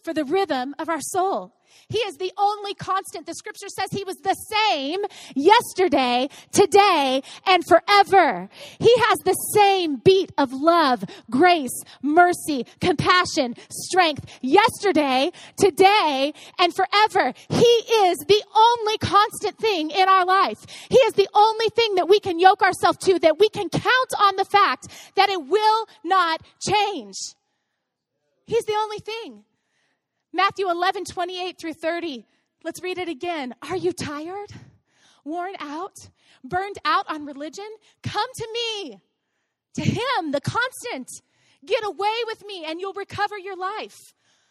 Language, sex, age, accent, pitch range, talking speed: English, female, 30-49, American, 255-395 Hz, 145 wpm